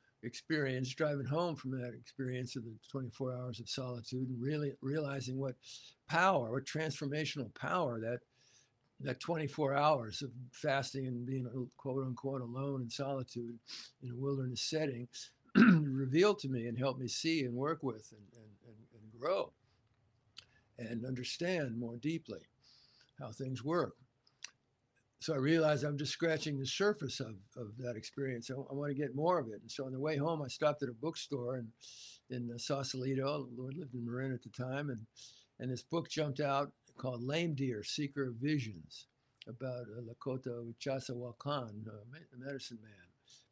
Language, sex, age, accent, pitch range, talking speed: English, male, 60-79, American, 120-145 Hz, 165 wpm